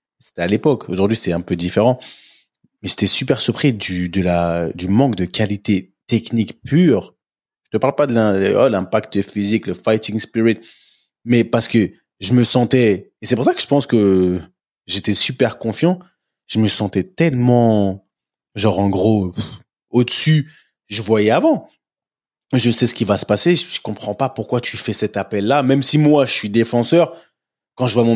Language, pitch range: French, 105-145 Hz